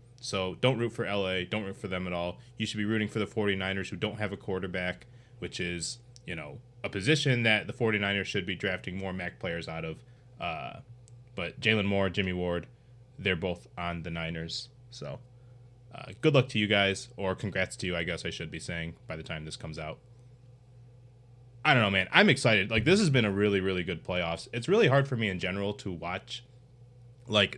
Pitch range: 95-125 Hz